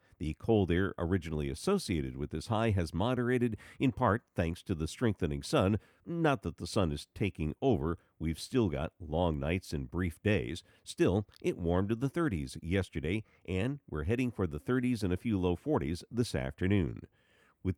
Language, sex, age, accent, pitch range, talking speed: English, male, 50-69, American, 85-115 Hz, 180 wpm